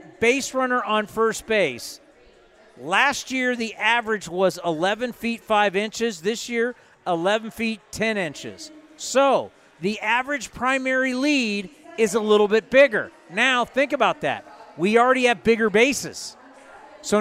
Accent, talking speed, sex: American, 140 wpm, male